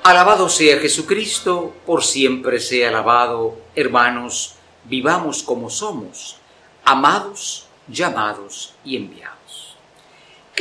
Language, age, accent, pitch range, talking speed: Spanish, 50-69, Spanish, 120-185 Hz, 90 wpm